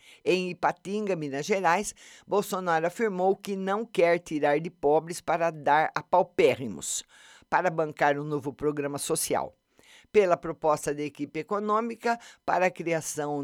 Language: Portuguese